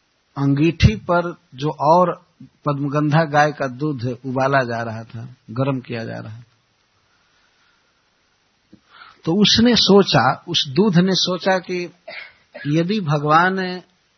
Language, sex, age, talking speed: Hindi, male, 60-79, 120 wpm